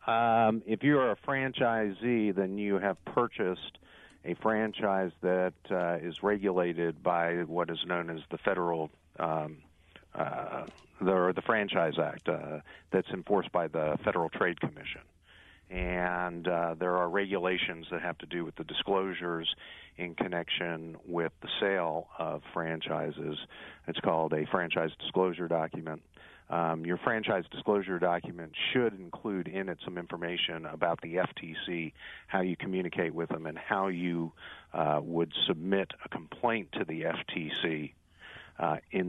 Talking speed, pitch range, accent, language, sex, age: 145 wpm, 80-95 Hz, American, English, male, 50-69